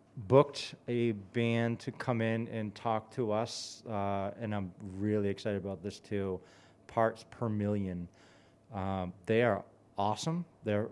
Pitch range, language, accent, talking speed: 95-115 Hz, English, American, 145 wpm